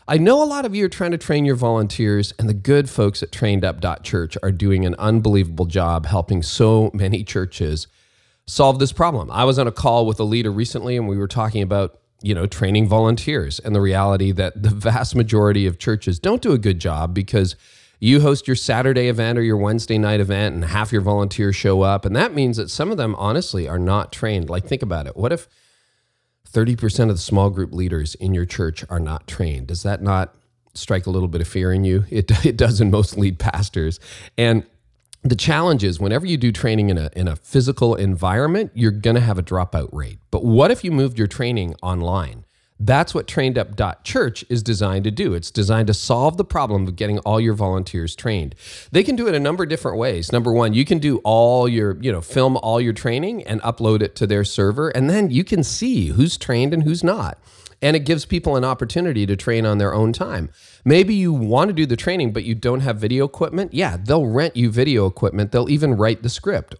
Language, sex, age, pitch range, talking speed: English, male, 30-49, 95-130 Hz, 225 wpm